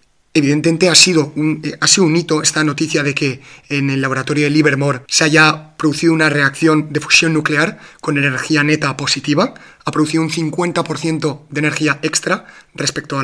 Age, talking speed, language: 30-49, 165 wpm, Spanish